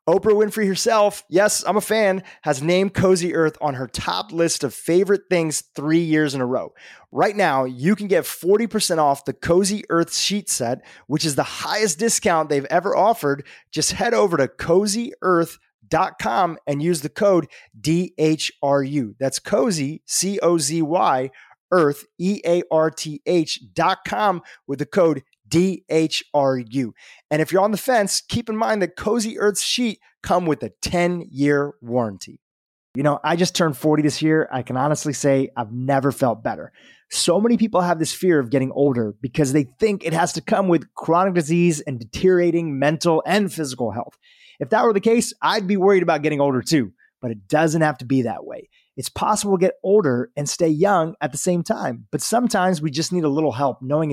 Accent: American